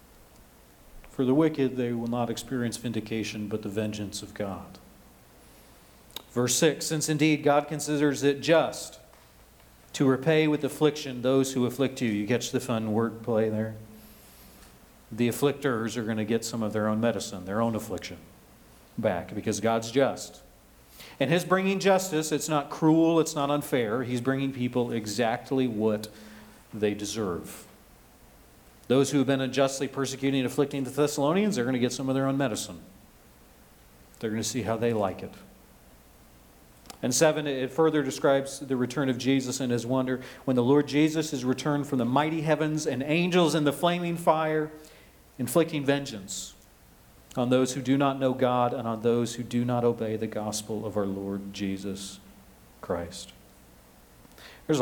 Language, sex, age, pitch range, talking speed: English, male, 40-59, 105-140 Hz, 165 wpm